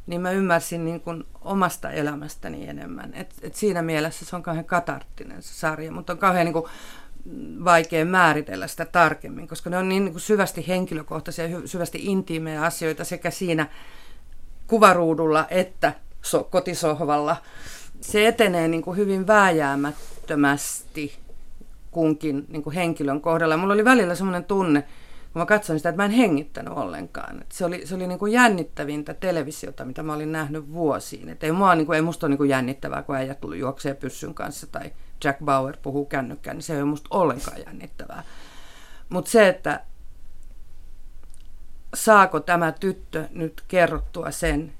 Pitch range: 150-180 Hz